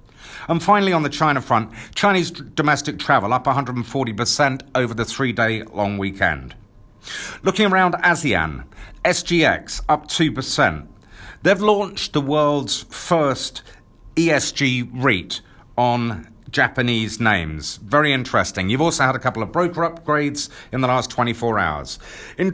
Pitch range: 125-165 Hz